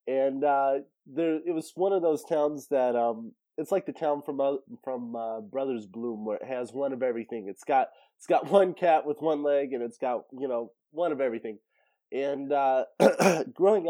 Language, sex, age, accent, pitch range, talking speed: English, male, 20-39, American, 115-140 Hz, 205 wpm